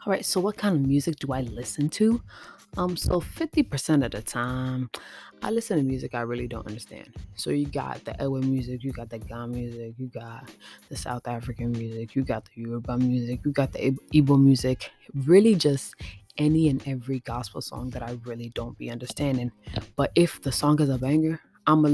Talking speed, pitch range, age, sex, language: 200 wpm, 120-145 Hz, 20-39, female, English